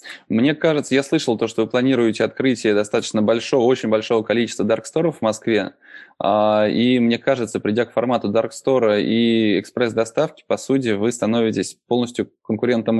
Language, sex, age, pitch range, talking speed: Russian, male, 20-39, 110-125 Hz, 150 wpm